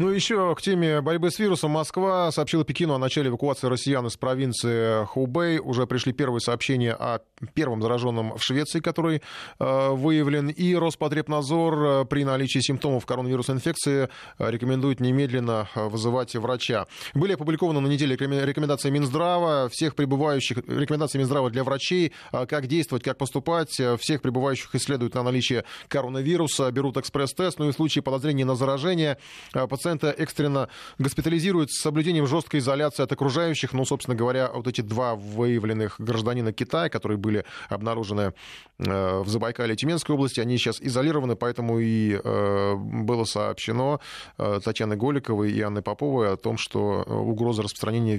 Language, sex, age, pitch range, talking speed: Russian, male, 20-39, 120-150 Hz, 145 wpm